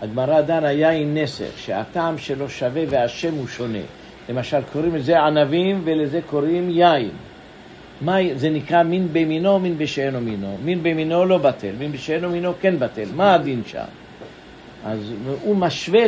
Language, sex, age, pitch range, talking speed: English, male, 60-79, 135-175 Hz, 145 wpm